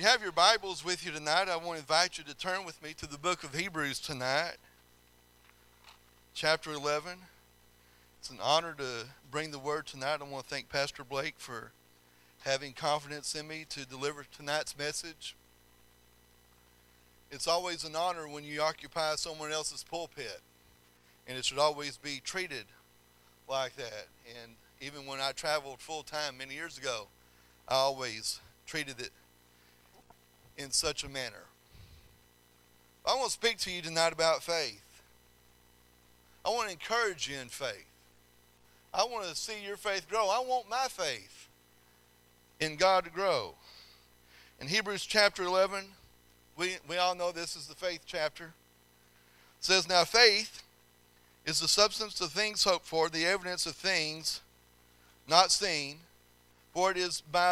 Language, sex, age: English, male, 40-59